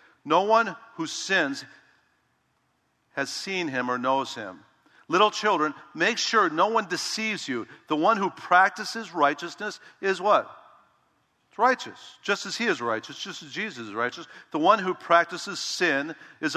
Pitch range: 140-185 Hz